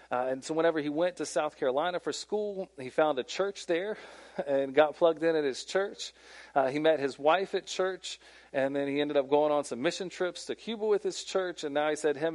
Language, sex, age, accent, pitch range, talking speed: English, male, 40-59, American, 145-180 Hz, 245 wpm